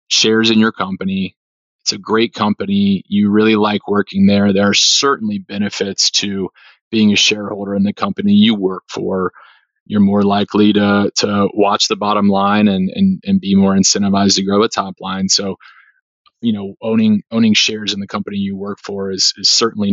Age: 30-49